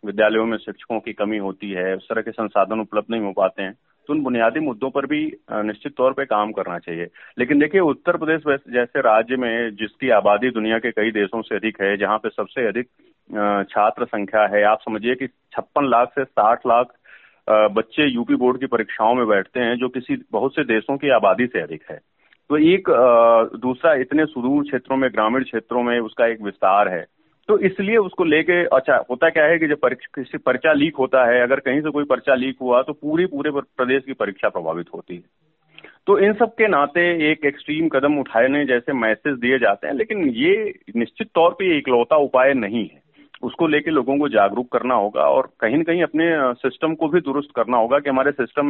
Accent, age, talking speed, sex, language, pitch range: native, 40-59, 205 wpm, male, Hindi, 110-150 Hz